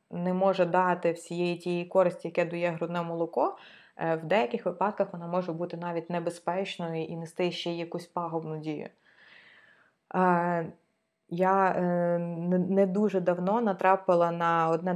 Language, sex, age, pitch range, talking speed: Ukrainian, female, 20-39, 170-200 Hz, 125 wpm